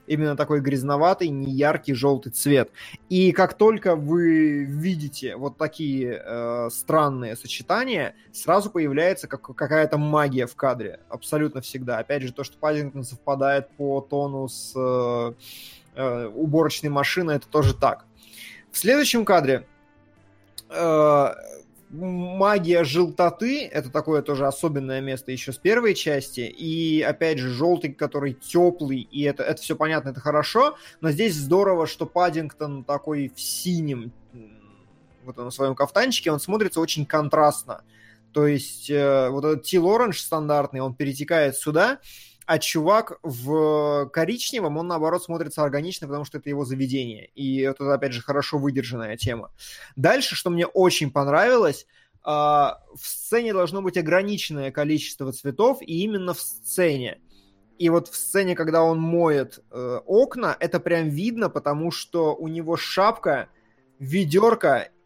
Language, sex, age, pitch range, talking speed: Russian, male, 20-39, 135-165 Hz, 135 wpm